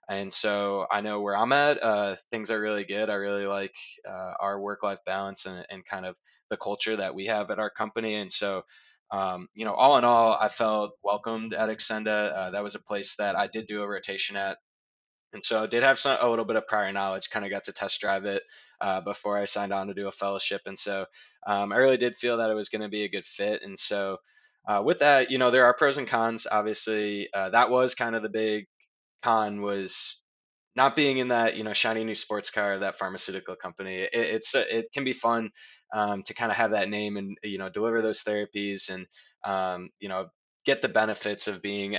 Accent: American